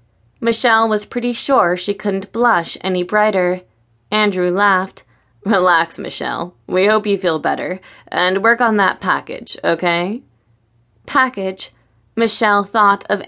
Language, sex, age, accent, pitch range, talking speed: English, female, 20-39, American, 170-225 Hz, 125 wpm